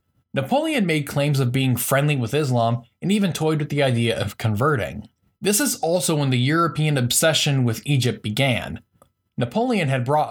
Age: 10-29